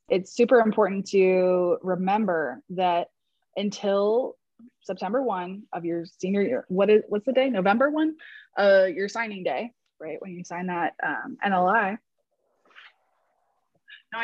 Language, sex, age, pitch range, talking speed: English, female, 20-39, 195-245 Hz, 130 wpm